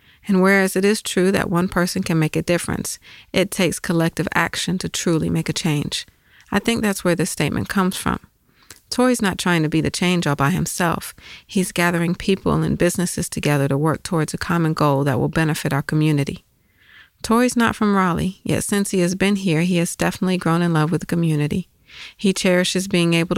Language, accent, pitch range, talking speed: English, American, 155-185 Hz, 205 wpm